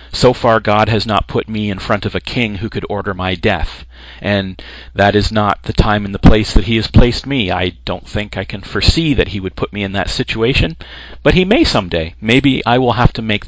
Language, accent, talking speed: English, American, 245 wpm